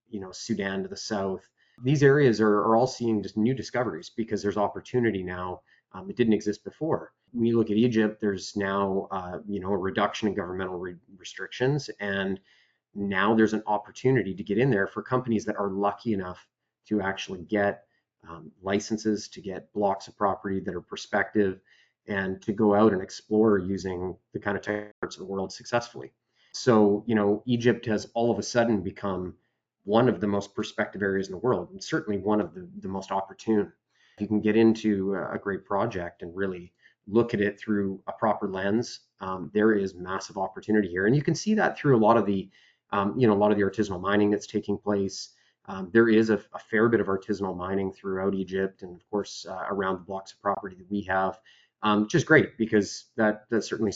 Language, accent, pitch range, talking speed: English, American, 95-110 Hz, 205 wpm